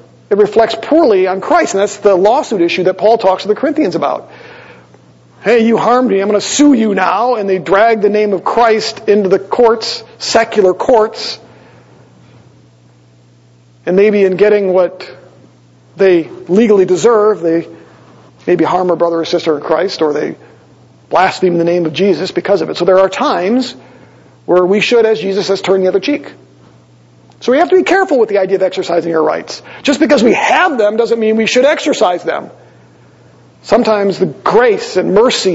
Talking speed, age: 185 wpm, 50-69